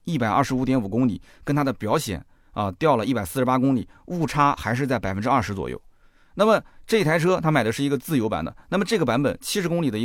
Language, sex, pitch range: Chinese, male, 100-150 Hz